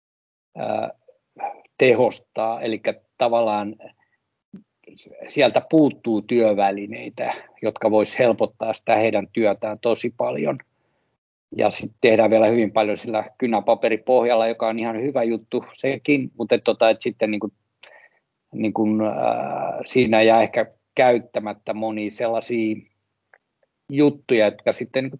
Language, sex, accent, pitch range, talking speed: Finnish, male, native, 110-130 Hz, 110 wpm